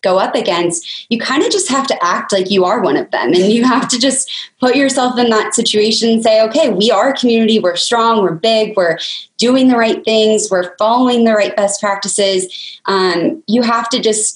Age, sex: 20-39, female